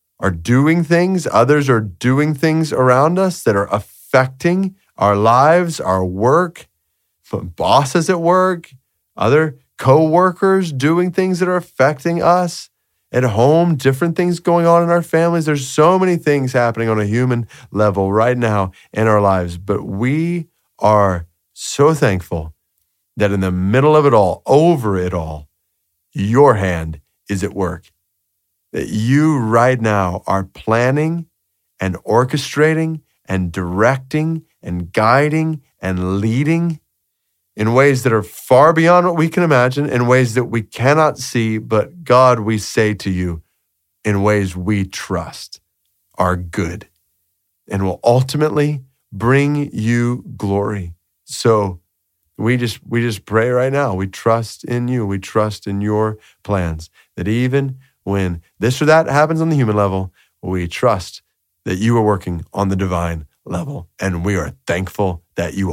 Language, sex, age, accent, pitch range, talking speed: English, male, 30-49, American, 95-150 Hz, 150 wpm